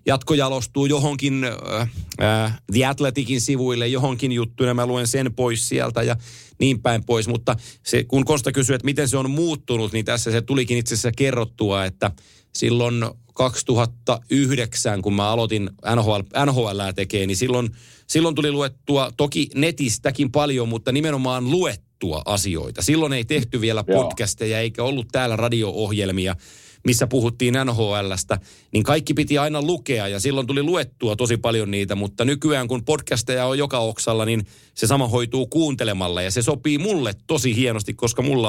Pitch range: 115-140 Hz